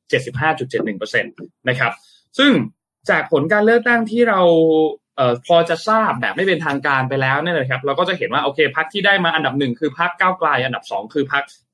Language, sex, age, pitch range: Thai, male, 20-39, 125-175 Hz